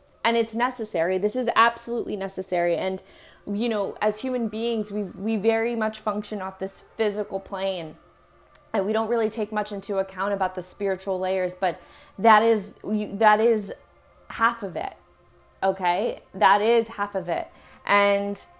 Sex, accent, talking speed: female, American, 160 wpm